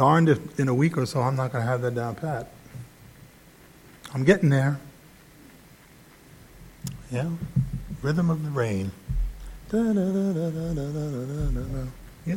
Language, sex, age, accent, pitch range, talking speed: English, male, 60-79, American, 120-155 Hz, 115 wpm